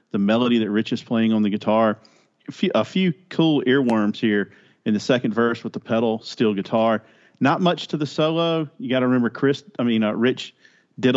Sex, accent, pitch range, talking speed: male, American, 105-130 Hz, 210 wpm